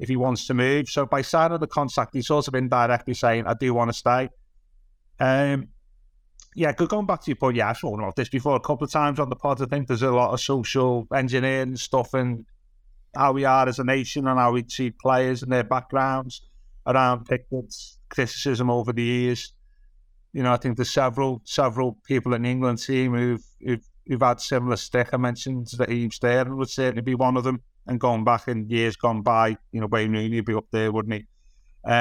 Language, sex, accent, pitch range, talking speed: English, male, British, 115-135 Hz, 220 wpm